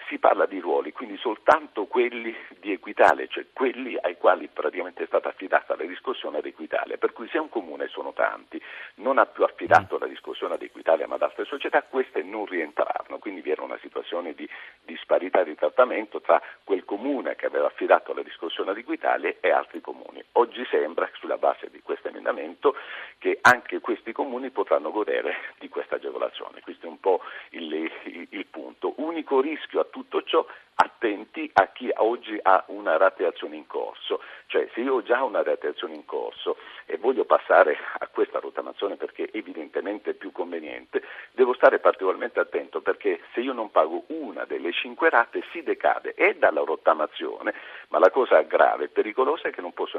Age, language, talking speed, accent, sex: 50-69, Italian, 175 wpm, native, male